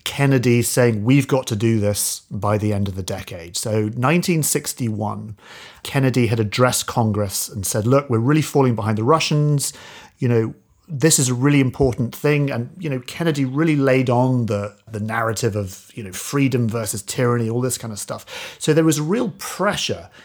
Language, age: English, 40-59